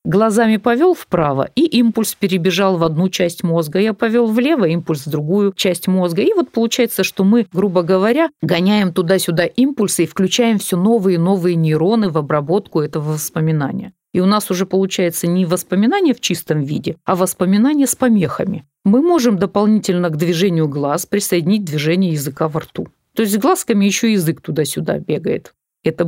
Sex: female